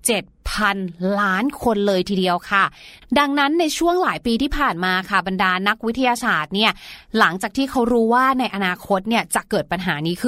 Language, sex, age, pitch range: Thai, female, 30-49, 205-275 Hz